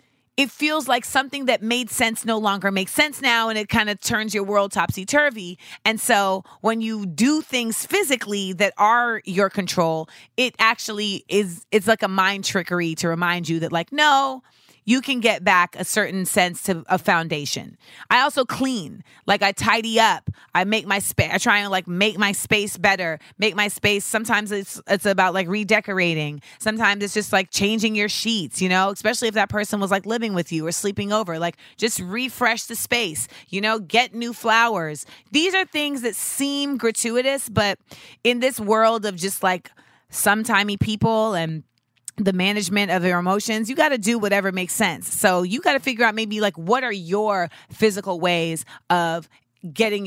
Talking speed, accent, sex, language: 190 wpm, American, female, English